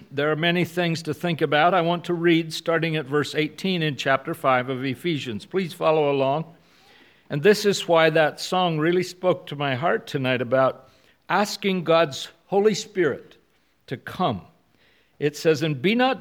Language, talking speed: English, 175 wpm